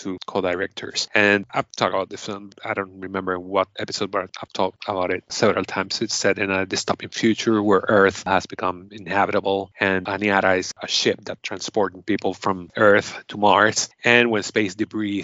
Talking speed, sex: 180 wpm, male